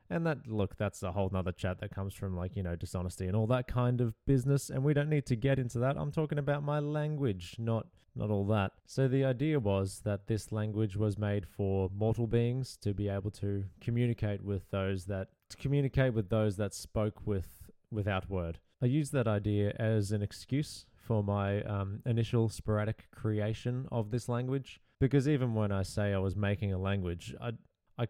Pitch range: 100-120 Hz